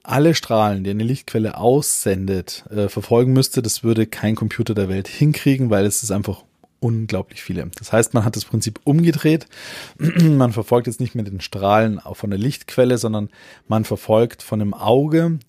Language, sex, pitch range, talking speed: German, male, 105-130 Hz, 175 wpm